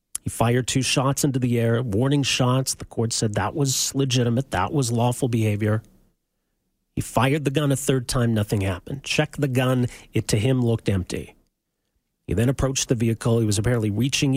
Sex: male